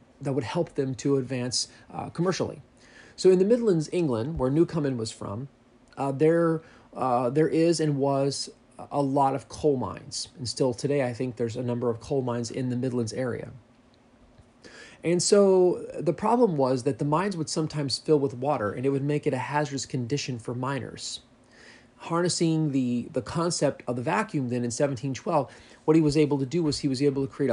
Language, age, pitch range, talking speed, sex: English, 30-49, 125-155 Hz, 195 wpm, male